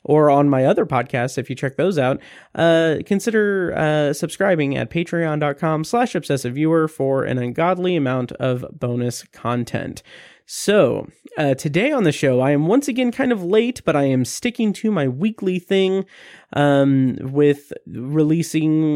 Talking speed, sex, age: 155 wpm, male, 30-49